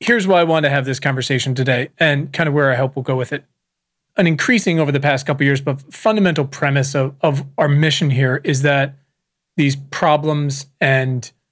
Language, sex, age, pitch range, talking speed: English, male, 30-49, 140-165 Hz, 210 wpm